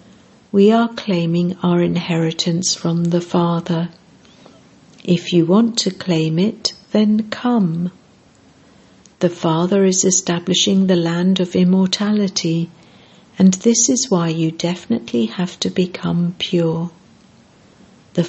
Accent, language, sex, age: British, English, female, 60-79